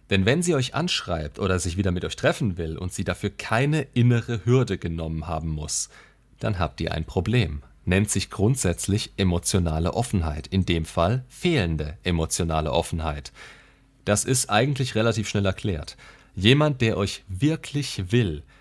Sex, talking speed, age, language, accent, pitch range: male, 155 wpm, 40-59, German, German, 85-120 Hz